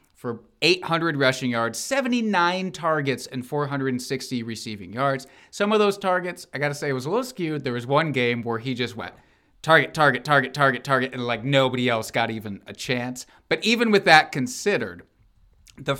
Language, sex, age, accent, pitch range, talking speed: English, male, 30-49, American, 115-160 Hz, 190 wpm